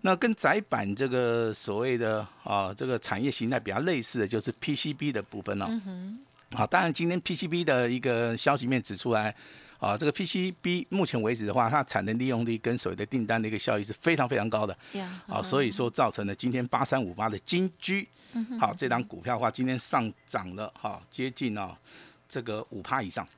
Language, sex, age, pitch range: Chinese, male, 50-69, 110-165 Hz